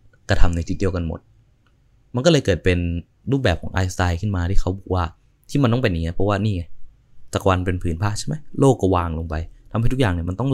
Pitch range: 90-125 Hz